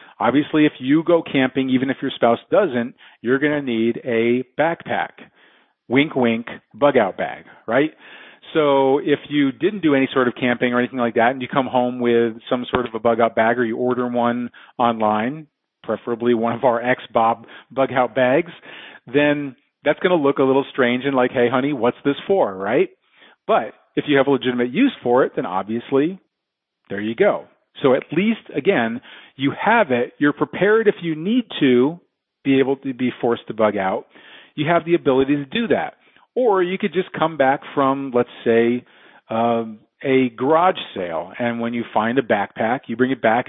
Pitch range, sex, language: 120-155 Hz, male, English